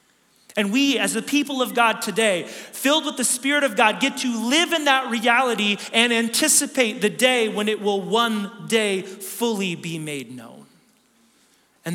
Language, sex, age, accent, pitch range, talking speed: English, male, 30-49, American, 190-255 Hz, 170 wpm